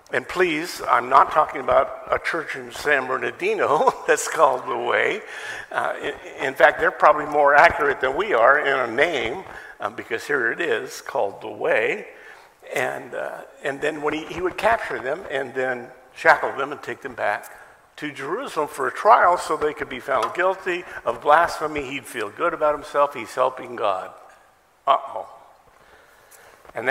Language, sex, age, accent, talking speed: English, male, 50-69, American, 175 wpm